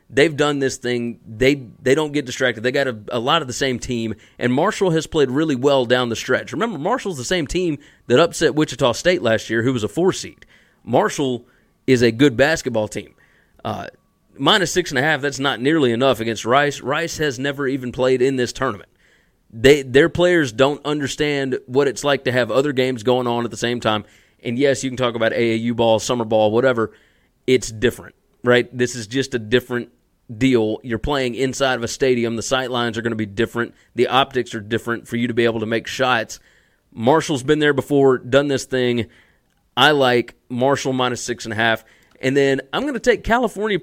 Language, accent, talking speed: English, American, 210 wpm